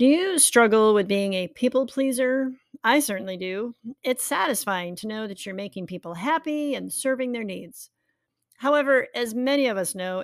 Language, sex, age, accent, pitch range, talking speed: English, female, 40-59, American, 190-270 Hz, 175 wpm